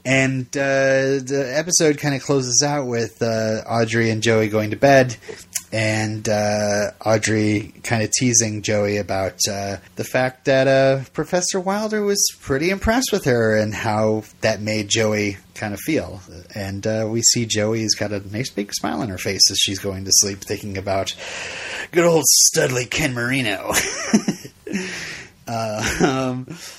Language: English